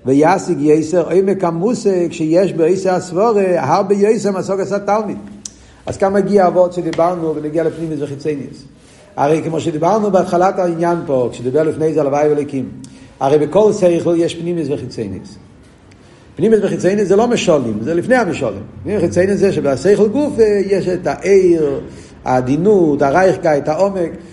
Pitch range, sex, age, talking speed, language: 145-200 Hz, male, 50-69, 135 wpm, Hebrew